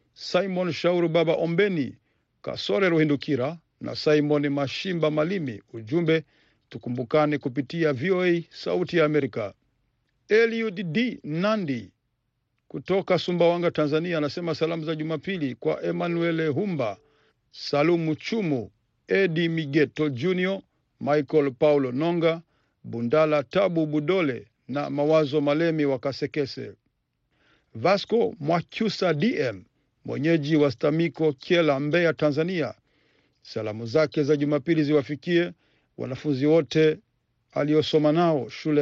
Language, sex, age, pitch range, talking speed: Swahili, male, 50-69, 140-170 Hz, 100 wpm